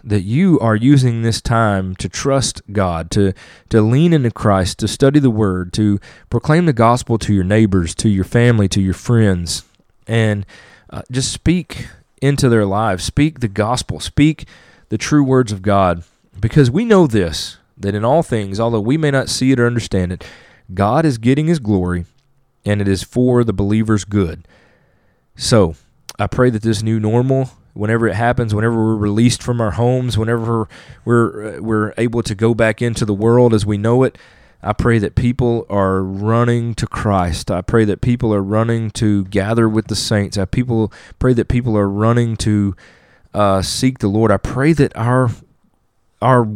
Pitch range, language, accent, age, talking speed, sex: 100-125 Hz, English, American, 30-49, 185 wpm, male